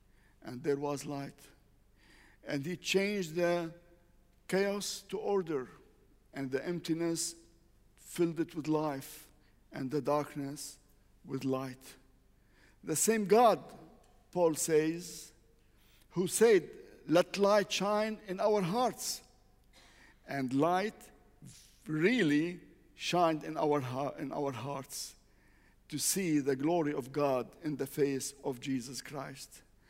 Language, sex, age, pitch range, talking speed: English, male, 50-69, 140-200 Hz, 110 wpm